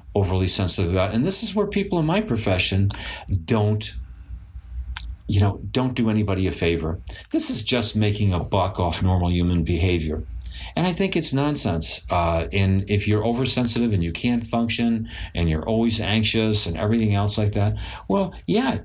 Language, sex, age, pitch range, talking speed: English, male, 50-69, 90-120 Hz, 170 wpm